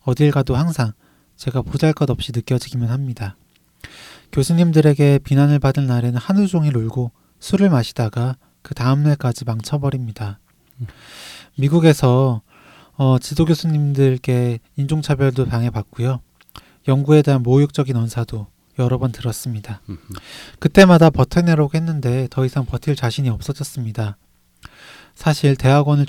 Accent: native